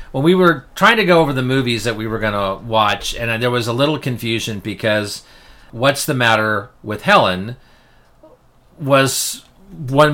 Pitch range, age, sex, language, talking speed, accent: 105-135 Hz, 40-59, male, English, 170 wpm, American